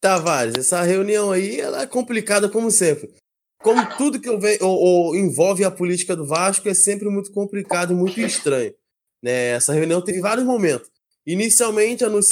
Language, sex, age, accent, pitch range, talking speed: Portuguese, male, 20-39, Brazilian, 160-205 Hz, 170 wpm